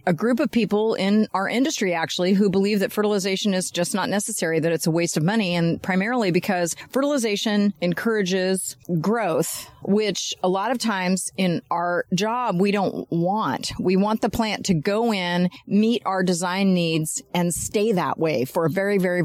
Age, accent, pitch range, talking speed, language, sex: 40-59, American, 170-210 Hz, 180 wpm, English, female